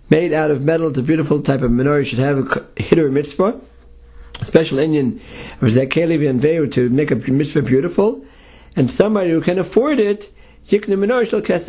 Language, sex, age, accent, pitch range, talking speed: English, male, 50-69, American, 135-170 Hz, 195 wpm